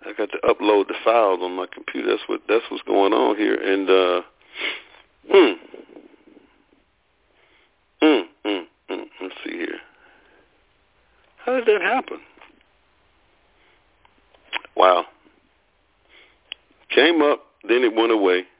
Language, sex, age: English, male, 50-69